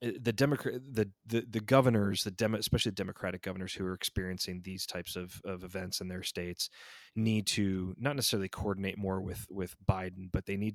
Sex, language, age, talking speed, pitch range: male, English, 20-39, 195 wpm, 90-100 Hz